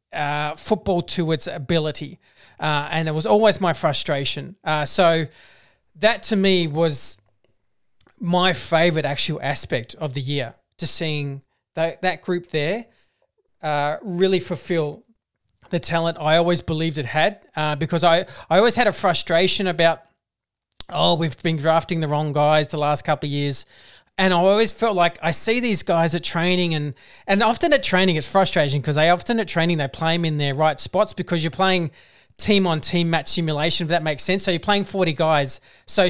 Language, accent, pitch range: English, Australian, 150-180 Hz